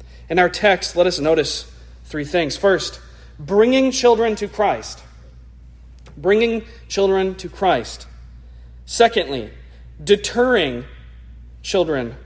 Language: English